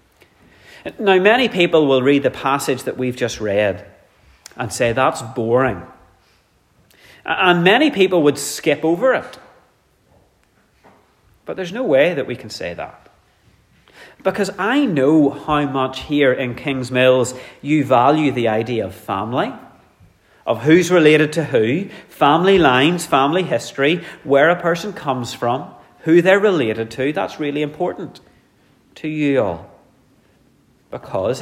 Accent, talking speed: British, 135 wpm